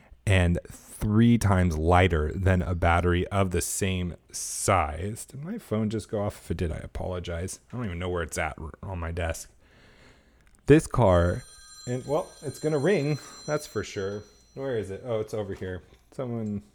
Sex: male